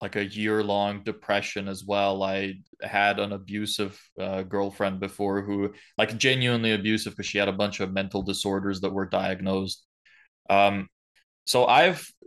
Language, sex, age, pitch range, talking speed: English, male, 20-39, 100-115 Hz, 155 wpm